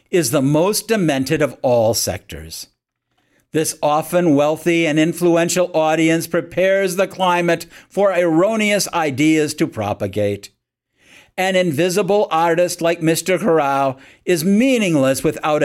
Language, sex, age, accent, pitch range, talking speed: English, male, 50-69, American, 140-195 Hz, 115 wpm